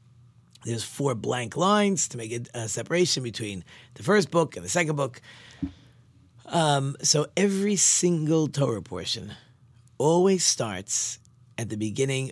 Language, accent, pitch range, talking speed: English, American, 115-140 Hz, 130 wpm